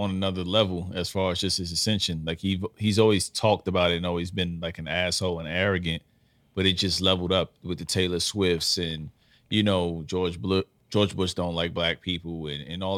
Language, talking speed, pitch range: English, 210 wpm, 85-95 Hz